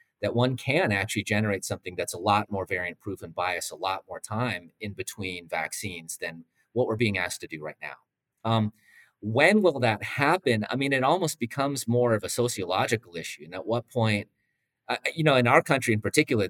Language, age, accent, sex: English, 30-49, American, male